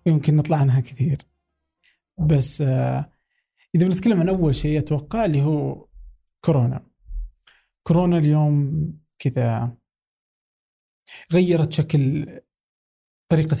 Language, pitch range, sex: Arabic, 130-155 Hz, male